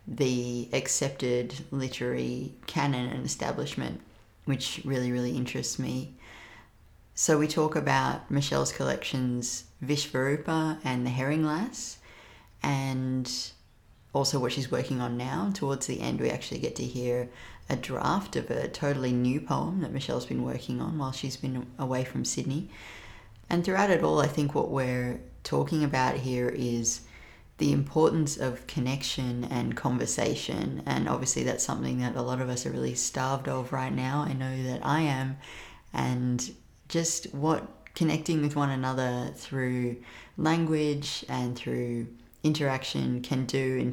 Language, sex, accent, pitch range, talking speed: English, female, Australian, 120-140 Hz, 150 wpm